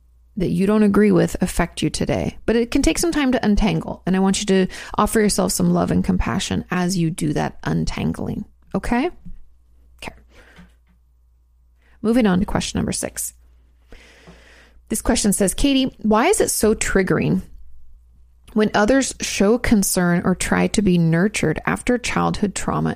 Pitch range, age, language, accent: 140-215 Hz, 30-49, English, American